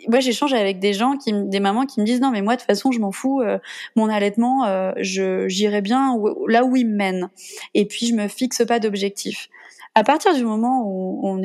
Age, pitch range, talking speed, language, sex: 20-39, 200-255 Hz, 225 wpm, French, female